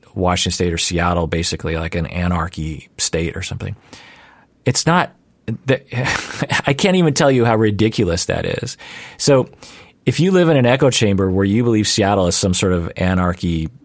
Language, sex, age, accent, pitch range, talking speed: English, male, 40-59, American, 90-115 Hz, 180 wpm